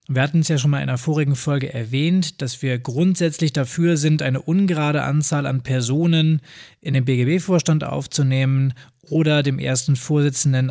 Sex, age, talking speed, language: male, 20-39, 160 wpm, German